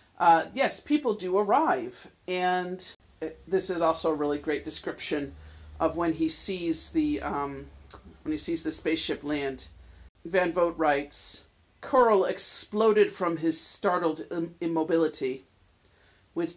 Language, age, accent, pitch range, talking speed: English, 40-59, American, 140-185 Hz, 125 wpm